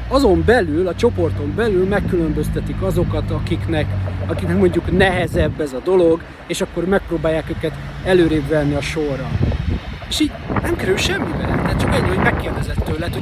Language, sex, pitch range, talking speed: Hungarian, male, 155-225 Hz, 150 wpm